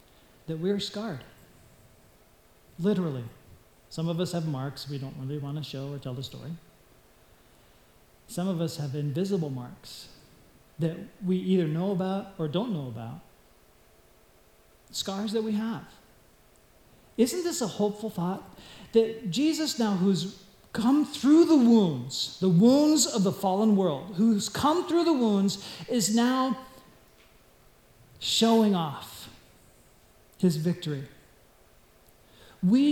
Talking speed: 130 wpm